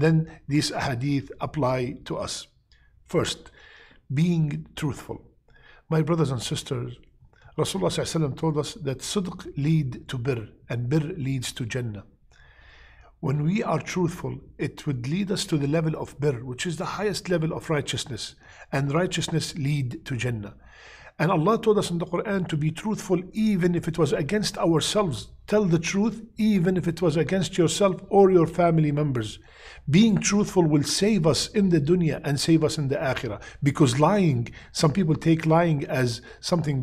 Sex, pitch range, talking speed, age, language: male, 135-175 Hz, 165 wpm, 50-69, English